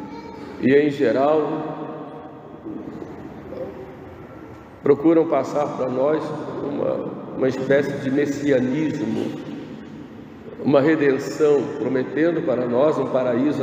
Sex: male